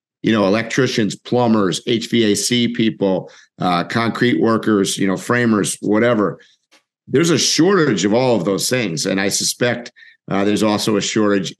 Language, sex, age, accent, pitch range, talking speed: English, male, 50-69, American, 95-120 Hz, 150 wpm